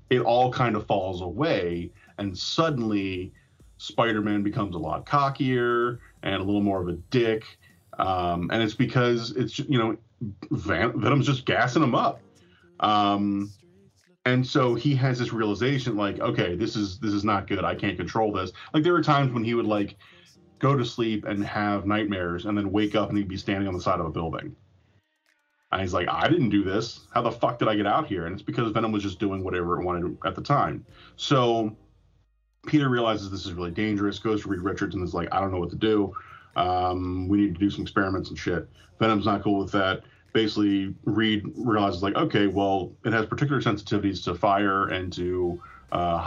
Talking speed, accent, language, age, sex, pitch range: 200 wpm, American, English, 30-49, male, 95-115 Hz